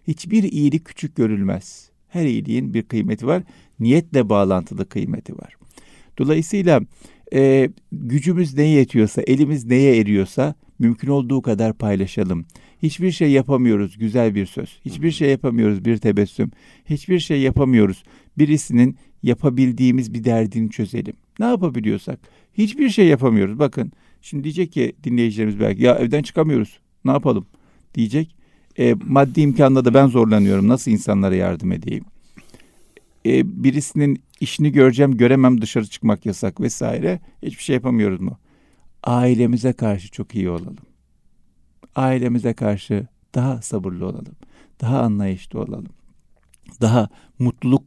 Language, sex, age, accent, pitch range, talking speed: Turkish, male, 60-79, native, 110-140 Hz, 125 wpm